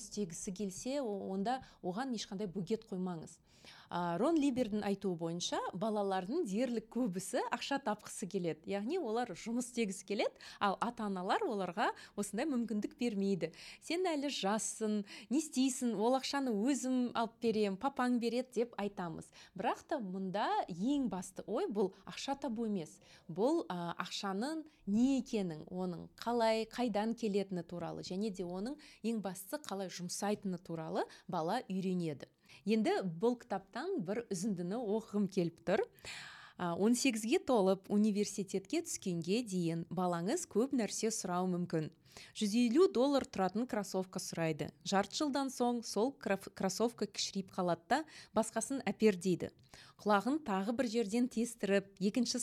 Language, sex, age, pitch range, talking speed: Russian, female, 20-39, 190-240 Hz, 110 wpm